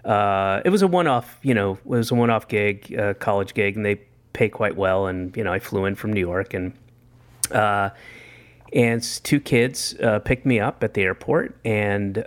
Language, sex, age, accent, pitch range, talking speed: English, male, 30-49, American, 110-150 Hz, 205 wpm